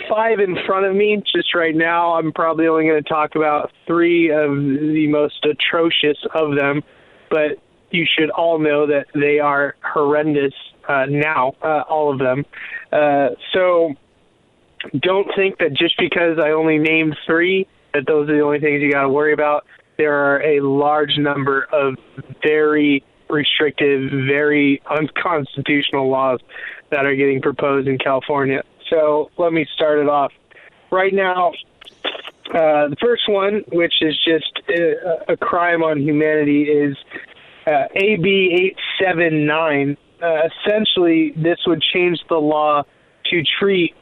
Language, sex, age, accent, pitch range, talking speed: English, male, 20-39, American, 145-170 Hz, 150 wpm